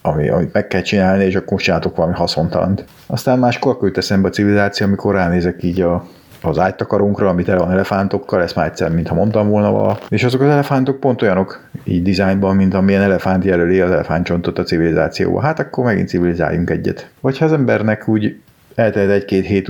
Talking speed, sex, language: 190 wpm, male, Hungarian